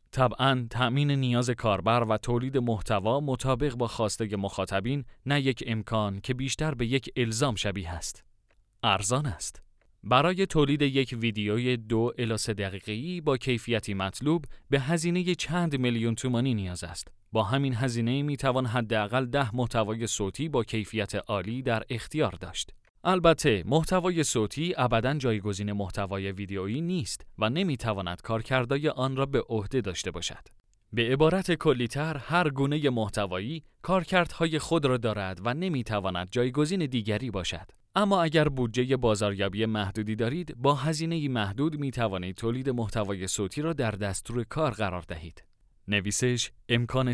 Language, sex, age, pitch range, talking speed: Persian, male, 30-49, 105-135 Hz, 140 wpm